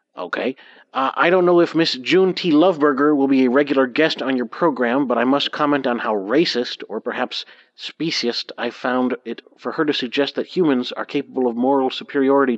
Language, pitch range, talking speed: English, 125-155 Hz, 200 wpm